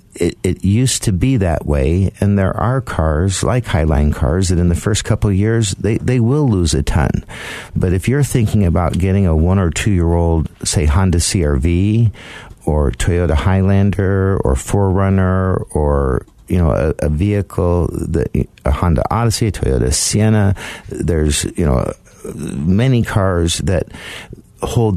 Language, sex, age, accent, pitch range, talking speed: English, male, 50-69, American, 85-110 Hz, 160 wpm